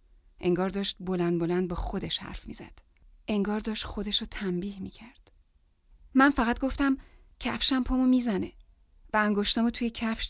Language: Persian